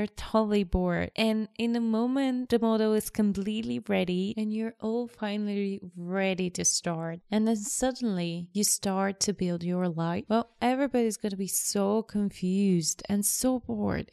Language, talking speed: English, 155 wpm